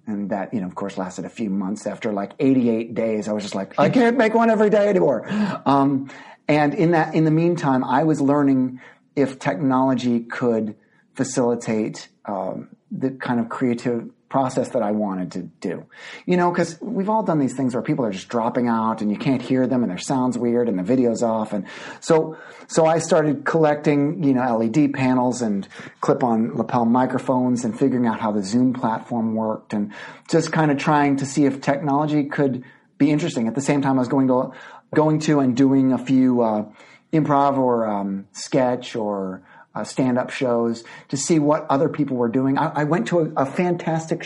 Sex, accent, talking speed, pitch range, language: male, American, 205 wpm, 120-150 Hz, English